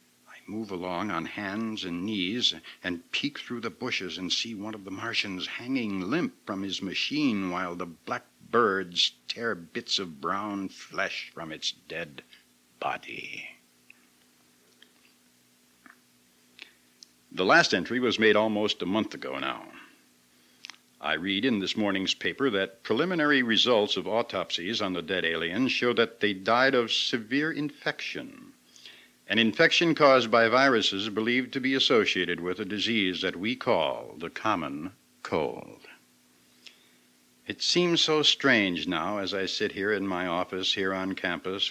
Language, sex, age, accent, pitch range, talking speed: English, male, 60-79, American, 85-120 Hz, 145 wpm